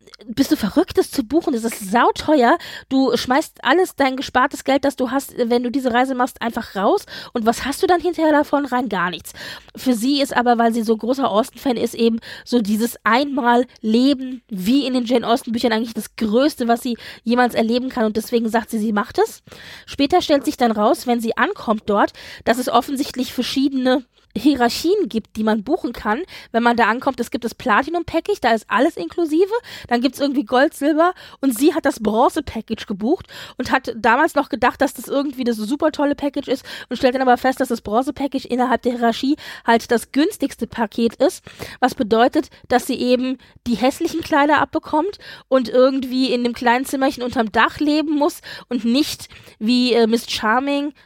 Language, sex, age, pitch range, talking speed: German, female, 20-39, 230-285 Hz, 195 wpm